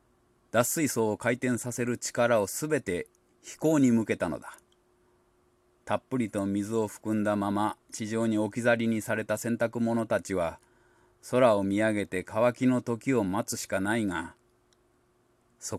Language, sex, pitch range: Japanese, male, 100-120 Hz